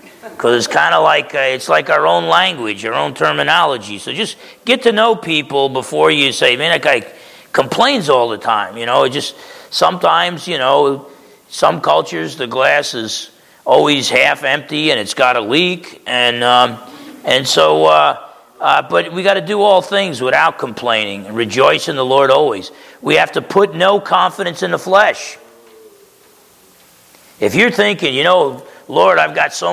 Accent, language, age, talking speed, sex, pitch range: American, English, 40-59, 180 wpm, male, 115-190 Hz